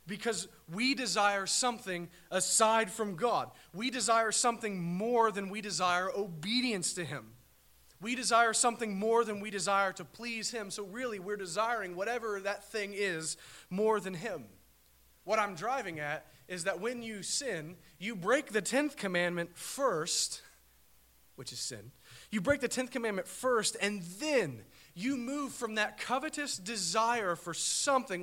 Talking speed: 155 wpm